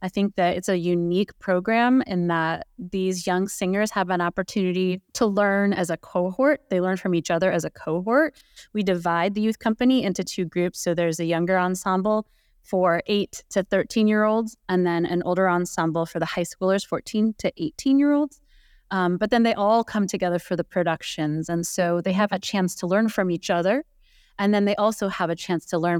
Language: English